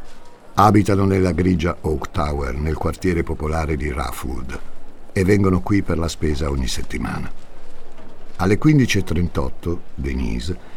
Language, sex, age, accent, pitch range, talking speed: Italian, male, 60-79, native, 75-100 Hz, 115 wpm